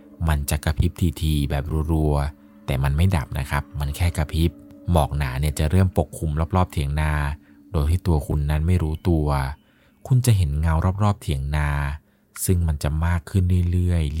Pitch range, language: 75-90 Hz, Thai